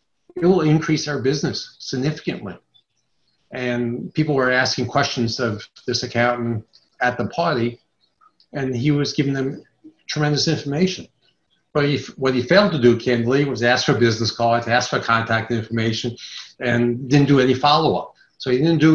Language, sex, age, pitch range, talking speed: English, male, 50-69, 115-135 Hz, 160 wpm